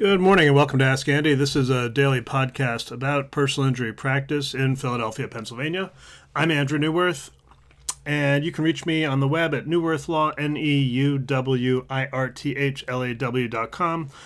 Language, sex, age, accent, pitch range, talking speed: English, male, 30-49, American, 130-155 Hz, 140 wpm